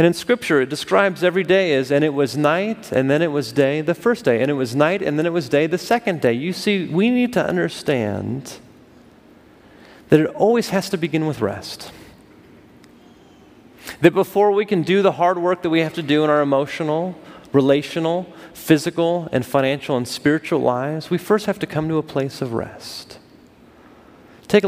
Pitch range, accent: 125-170 Hz, American